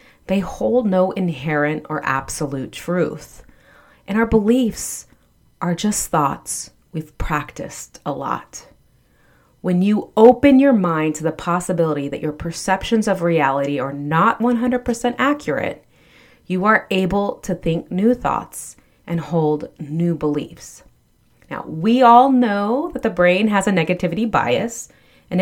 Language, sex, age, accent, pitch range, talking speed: English, female, 30-49, American, 165-230 Hz, 135 wpm